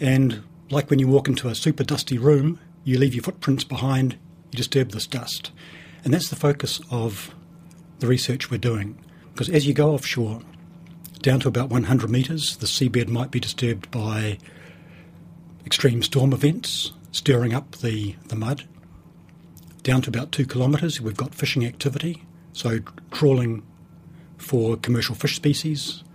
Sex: male